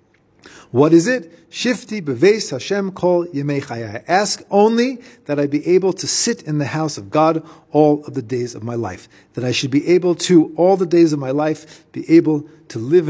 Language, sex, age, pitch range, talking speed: English, male, 40-59, 145-205 Hz, 200 wpm